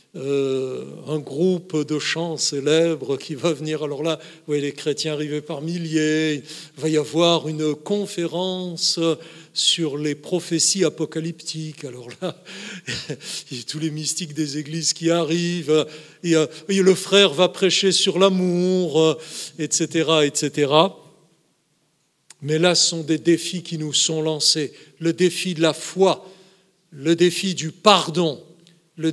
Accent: French